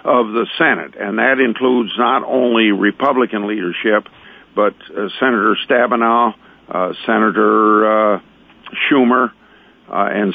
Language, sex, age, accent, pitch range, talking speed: English, male, 50-69, American, 105-120 Hz, 115 wpm